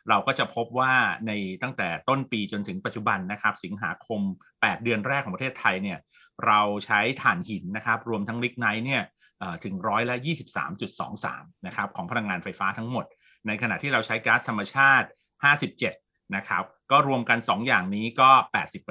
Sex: male